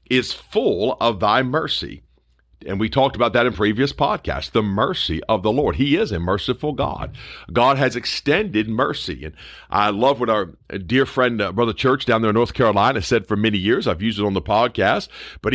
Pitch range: 100-135 Hz